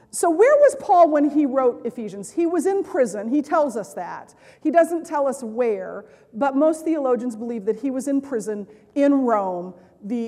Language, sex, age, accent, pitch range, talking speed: English, female, 40-59, American, 225-290 Hz, 195 wpm